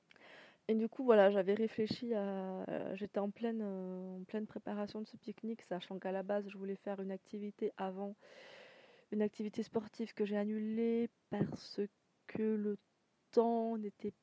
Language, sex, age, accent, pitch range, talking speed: French, female, 20-39, French, 190-220 Hz, 155 wpm